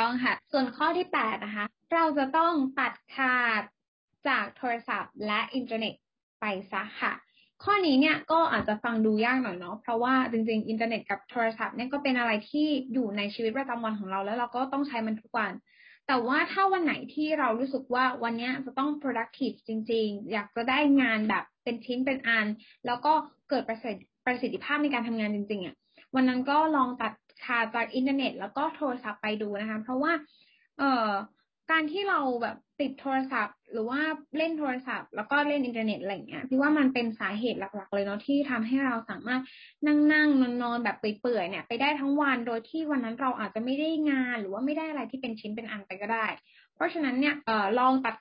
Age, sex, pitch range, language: 10-29, female, 220-280 Hz, Thai